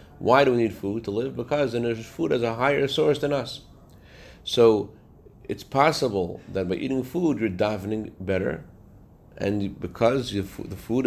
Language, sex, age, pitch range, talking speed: English, male, 40-59, 95-125 Hz, 175 wpm